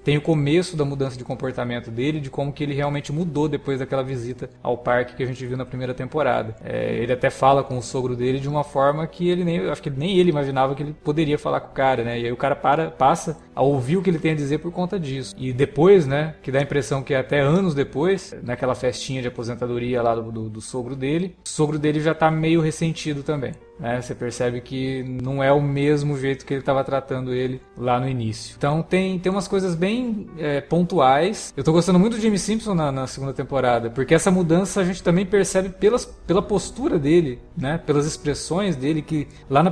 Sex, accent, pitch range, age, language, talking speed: male, Brazilian, 130-170 Hz, 20-39, Portuguese, 230 wpm